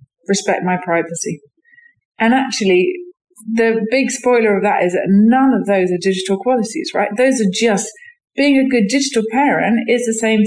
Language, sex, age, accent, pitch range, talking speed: English, female, 40-59, British, 185-230 Hz, 170 wpm